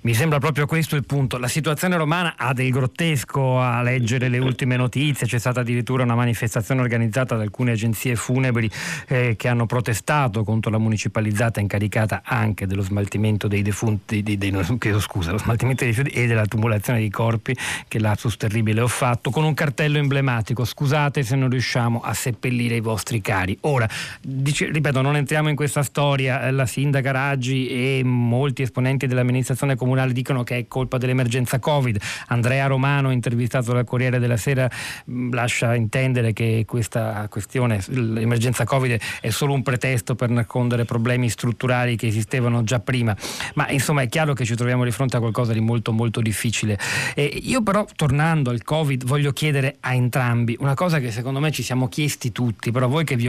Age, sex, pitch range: 40-59, male, 115-135 Hz